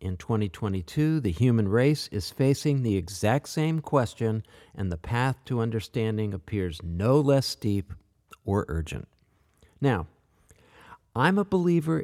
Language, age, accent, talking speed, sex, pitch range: English, 50-69, American, 130 wpm, male, 100-140 Hz